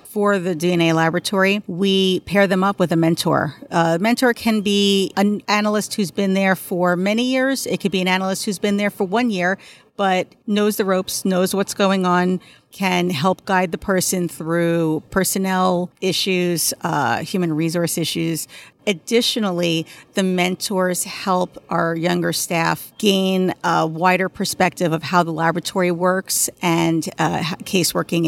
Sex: female